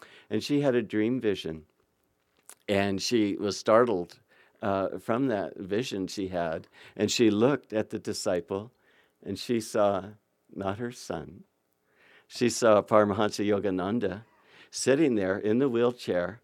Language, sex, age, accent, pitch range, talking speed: English, male, 60-79, American, 95-120 Hz, 135 wpm